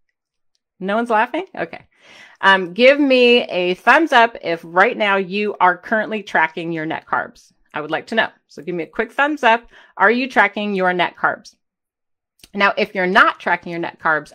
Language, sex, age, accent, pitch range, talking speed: English, female, 30-49, American, 180-245 Hz, 190 wpm